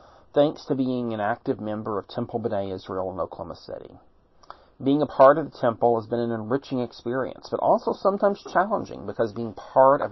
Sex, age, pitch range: male, 40-59, 110-140 Hz